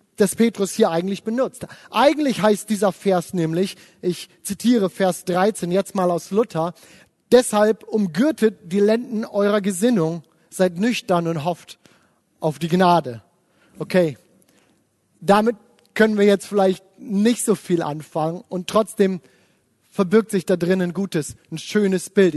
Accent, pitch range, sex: German, 180-225 Hz, male